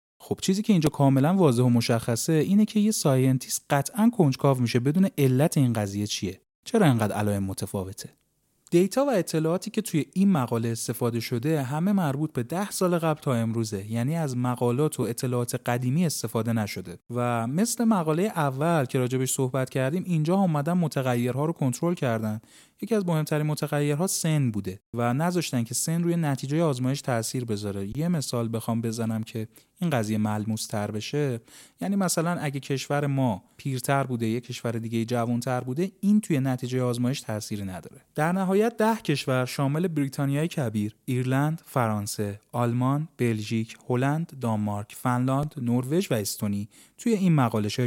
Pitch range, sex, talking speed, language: 115-160 Hz, male, 160 wpm, Persian